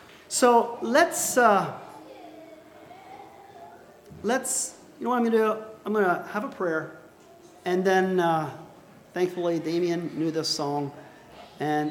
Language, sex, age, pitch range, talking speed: English, male, 40-59, 145-200 Hz, 130 wpm